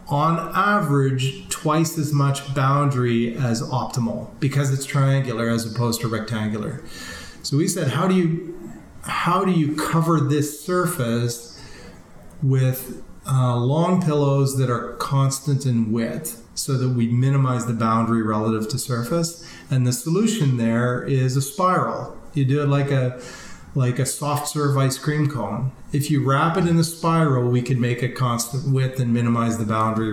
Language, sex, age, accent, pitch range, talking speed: English, male, 40-59, American, 115-140 Hz, 160 wpm